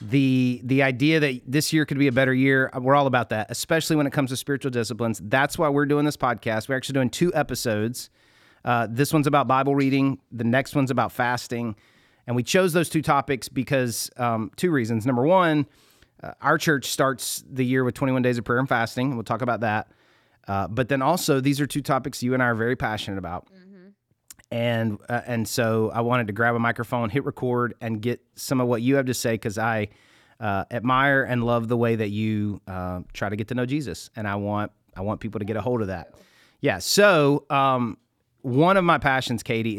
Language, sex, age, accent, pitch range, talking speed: English, male, 30-49, American, 115-140 Hz, 225 wpm